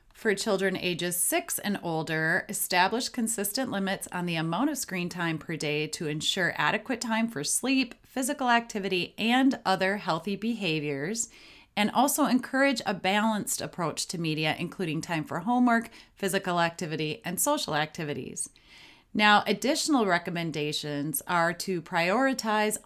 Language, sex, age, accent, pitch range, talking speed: English, female, 30-49, American, 170-235 Hz, 135 wpm